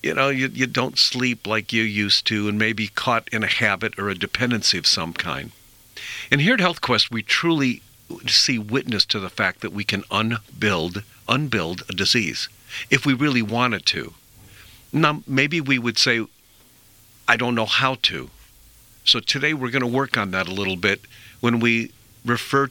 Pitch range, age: 105-130 Hz, 50-69